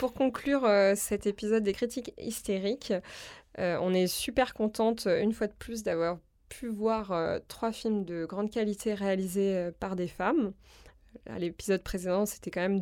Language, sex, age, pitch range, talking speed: French, female, 20-39, 180-215 Hz, 170 wpm